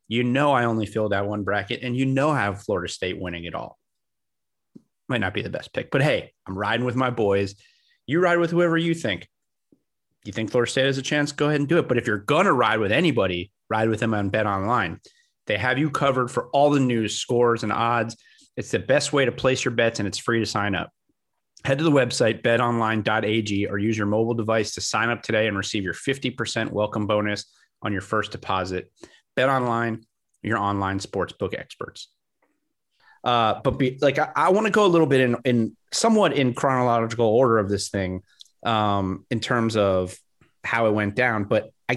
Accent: American